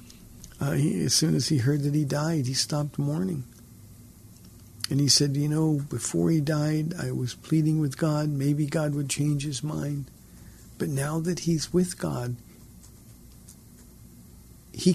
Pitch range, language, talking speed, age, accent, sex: 135-165 Hz, English, 155 wpm, 50-69, American, male